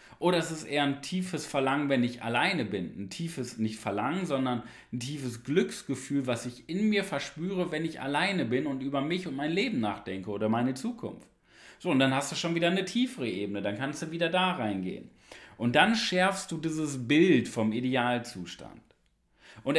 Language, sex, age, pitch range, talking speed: German, male, 40-59, 120-170 Hz, 190 wpm